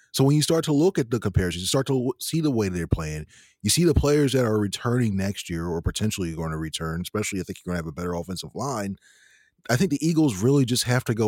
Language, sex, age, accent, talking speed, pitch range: English, male, 30-49, American, 270 wpm, 95-120 Hz